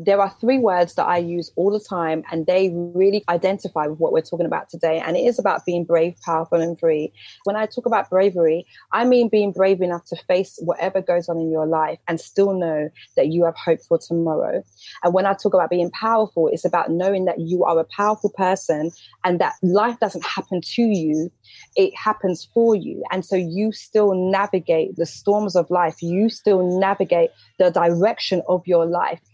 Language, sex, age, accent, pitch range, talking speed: English, female, 20-39, British, 165-200 Hz, 205 wpm